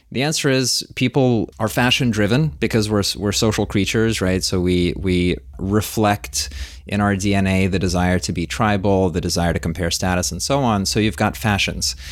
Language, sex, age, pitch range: English, male, 30-49, 95-110 Hz